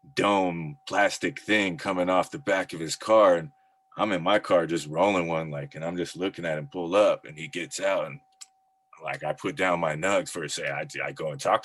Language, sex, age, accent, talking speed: English, male, 20-39, American, 235 wpm